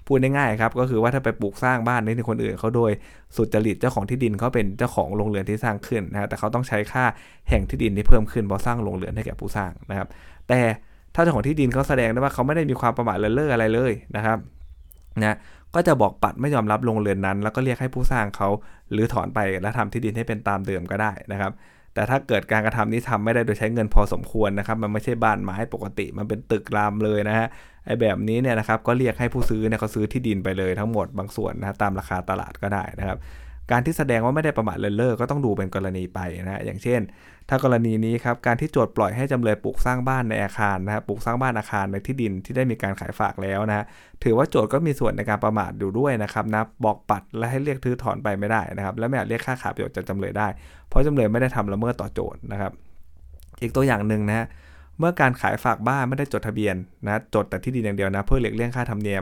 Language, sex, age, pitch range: Thai, male, 20-39, 100-120 Hz